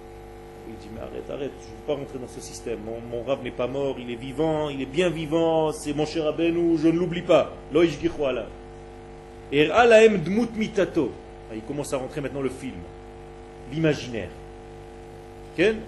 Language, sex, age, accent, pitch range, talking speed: French, male, 40-59, French, 90-140 Hz, 190 wpm